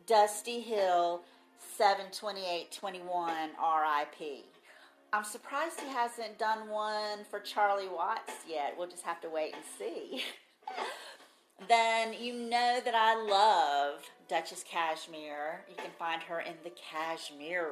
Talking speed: 120 wpm